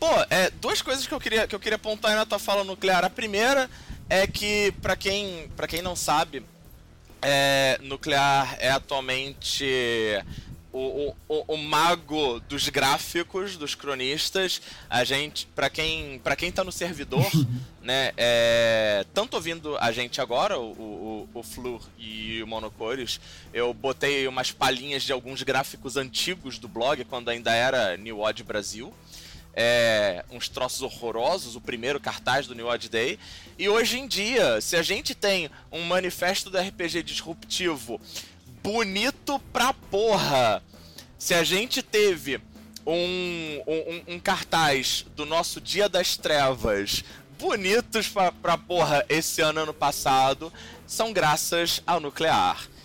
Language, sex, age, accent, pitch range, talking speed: Portuguese, male, 20-39, Brazilian, 125-190 Hz, 150 wpm